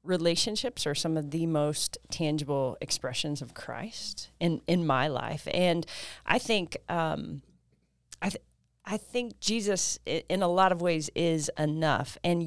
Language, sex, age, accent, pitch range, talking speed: English, female, 30-49, American, 145-180 Hz, 150 wpm